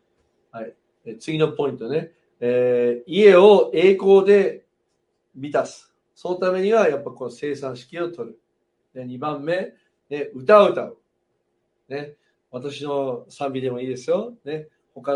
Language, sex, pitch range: Japanese, male, 125-185 Hz